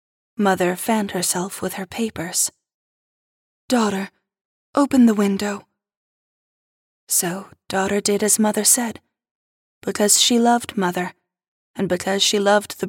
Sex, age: female, 20-39